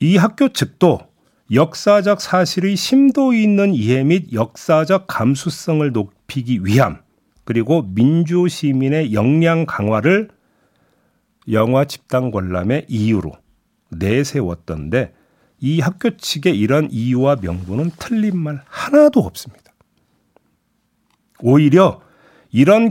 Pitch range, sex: 115-180 Hz, male